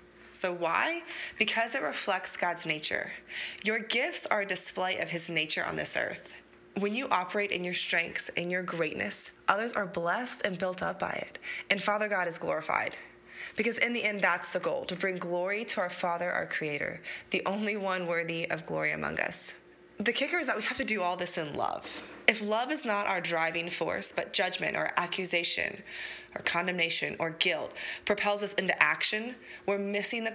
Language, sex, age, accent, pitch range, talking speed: English, female, 20-39, American, 175-215 Hz, 190 wpm